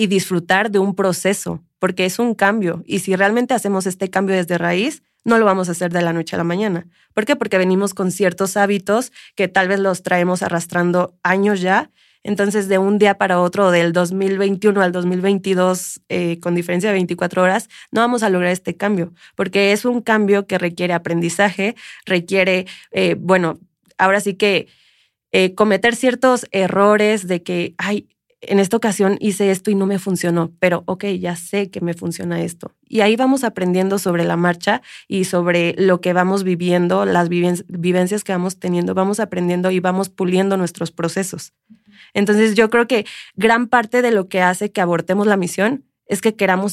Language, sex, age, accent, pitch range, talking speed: Spanish, female, 20-39, Mexican, 180-205 Hz, 185 wpm